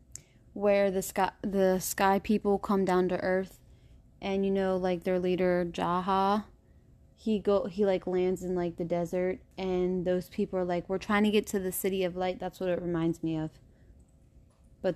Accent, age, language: American, 20-39, English